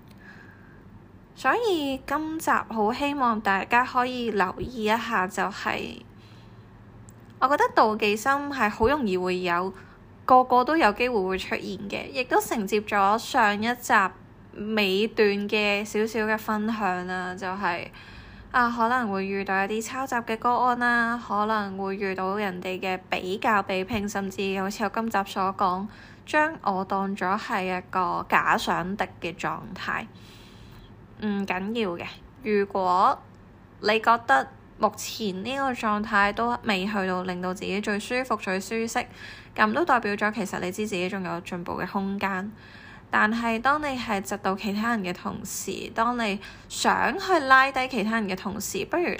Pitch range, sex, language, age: 185-230 Hz, female, Chinese, 10-29